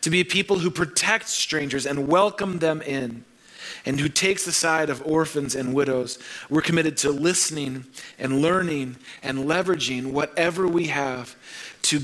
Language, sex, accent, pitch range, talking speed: English, male, American, 130-160 Hz, 160 wpm